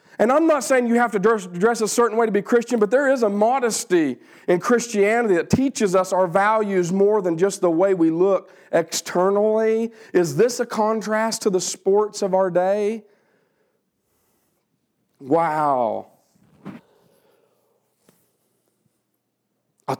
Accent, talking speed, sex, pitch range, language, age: American, 140 wpm, male, 170-235 Hz, English, 40-59